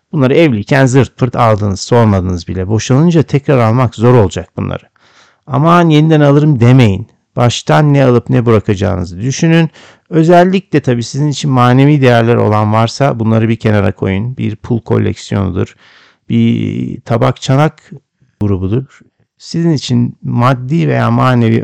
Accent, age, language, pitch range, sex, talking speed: native, 60-79, Turkish, 110-135 Hz, male, 130 wpm